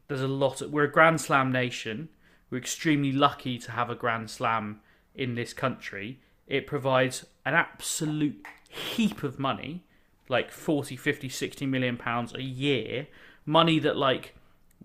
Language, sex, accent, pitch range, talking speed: English, male, British, 120-150 Hz, 150 wpm